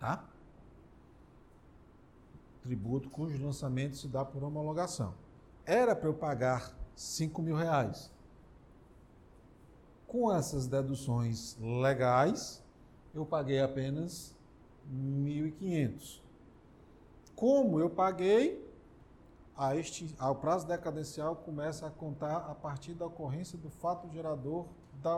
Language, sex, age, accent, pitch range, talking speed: Portuguese, male, 50-69, Brazilian, 135-185 Hz, 95 wpm